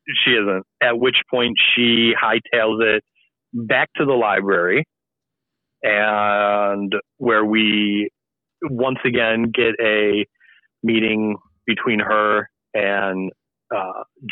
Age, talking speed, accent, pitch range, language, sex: 40-59, 100 wpm, American, 100-115 Hz, English, male